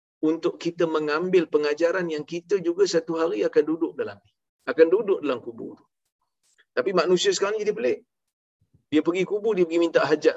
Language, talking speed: Malayalam, 170 wpm